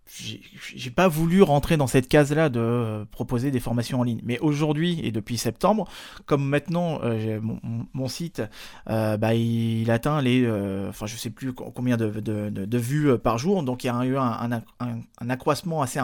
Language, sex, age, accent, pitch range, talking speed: French, male, 20-39, French, 115-150 Hz, 200 wpm